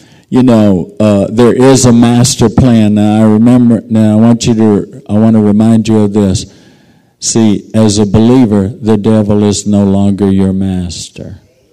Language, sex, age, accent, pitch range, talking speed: English, male, 50-69, American, 100-115 Hz, 175 wpm